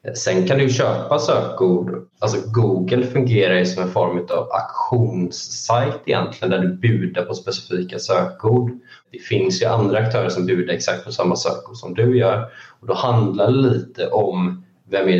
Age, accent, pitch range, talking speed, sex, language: 20-39, Swedish, 90-115 Hz, 165 wpm, male, English